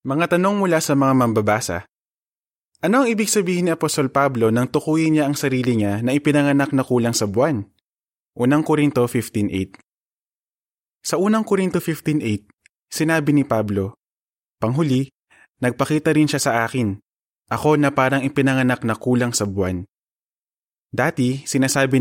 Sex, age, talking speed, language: male, 20-39, 140 wpm, Filipino